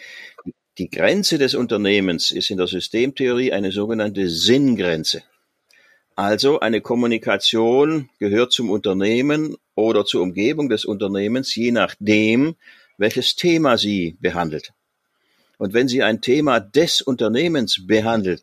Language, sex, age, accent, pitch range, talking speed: German, male, 50-69, German, 100-125 Hz, 115 wpm